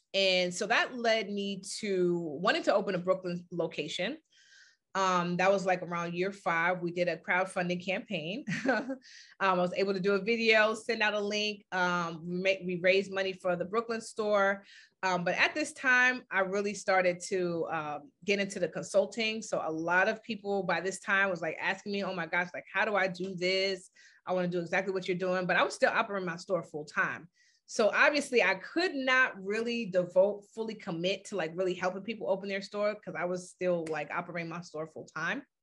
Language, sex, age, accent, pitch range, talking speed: English, female, 30-49, American, 180-215 Hz, 210 wpm